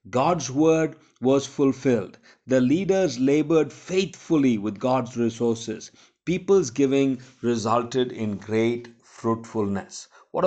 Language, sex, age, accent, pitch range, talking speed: Hindi, male, 50-69, native, 110-145 Hz, 105 wpm